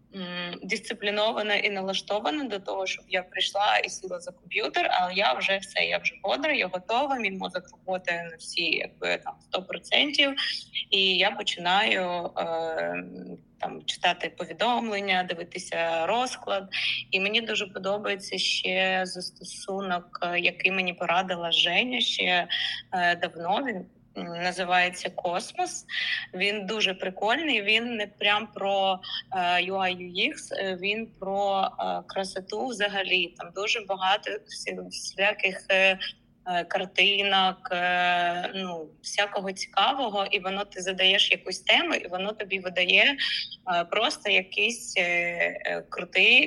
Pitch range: 180-205 Hz